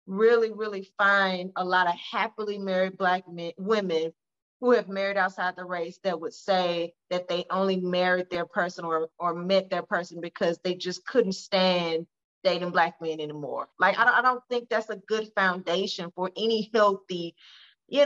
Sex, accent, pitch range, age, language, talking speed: female, American, 175-255 Hz, 30-49, English, 180 wpm